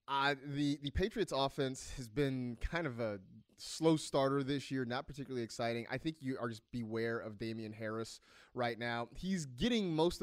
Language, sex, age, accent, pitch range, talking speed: English, male, 30-49, American, 120-175 Hz, 180 wpm